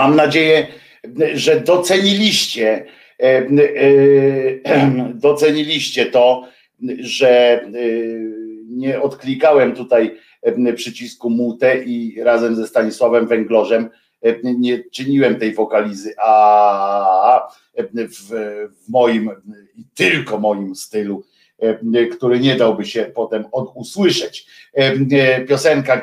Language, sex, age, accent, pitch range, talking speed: Polish, male, 50-69, native, 110-130 Hz, 100 wpm